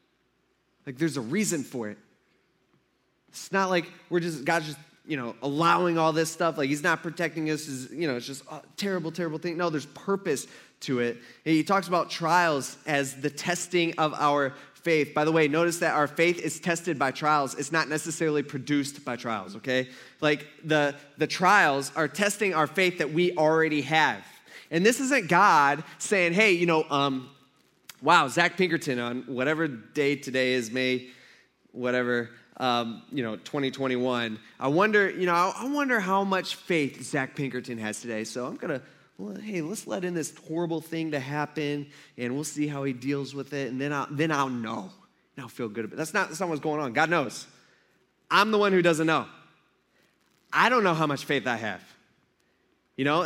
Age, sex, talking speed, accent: 20-39, male, 195 wpm, American